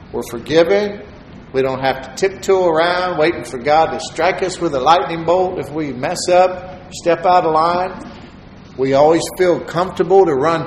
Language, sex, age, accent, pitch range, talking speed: English, male, 50-69, American, 140-185 Hz, 180 wpm